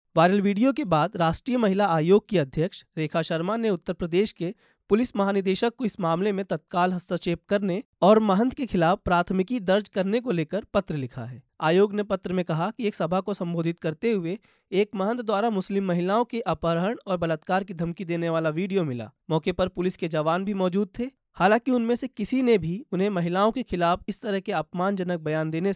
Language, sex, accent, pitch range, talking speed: Hindi, male, native, 170-210 Hz, 205 wpm